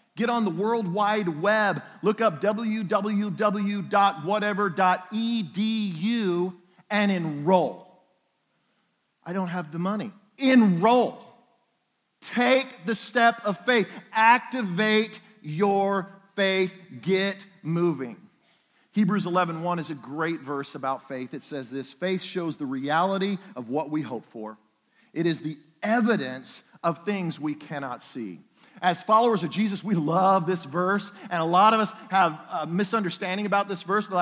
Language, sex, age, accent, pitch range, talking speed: English, male, 50-69, American, 175-220 Hz, 135 wpm